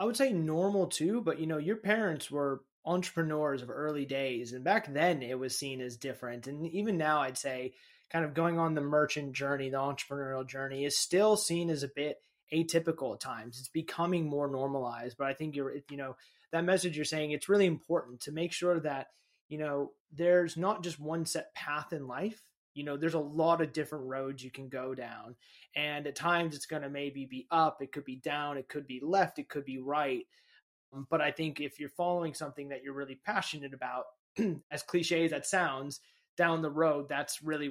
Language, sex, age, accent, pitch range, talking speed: English, male, 20-39, American, 135-165 Hz, 210 wpm